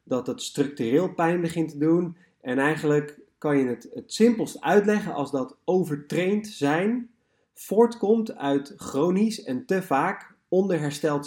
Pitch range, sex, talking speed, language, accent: 140-180 Hz, male, 140 wpm, Dutch, Dutch